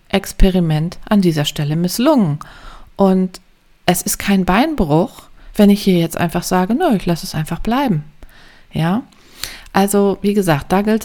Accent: German